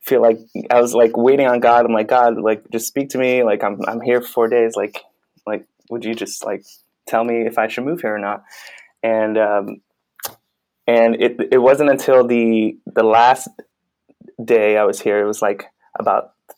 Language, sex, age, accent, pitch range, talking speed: English, male, 20-39, American, 110-125 Hz, 205 wpm